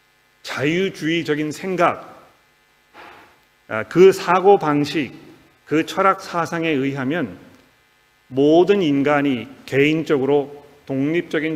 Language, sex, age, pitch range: Korean, male, 40-59, 135-170 Hz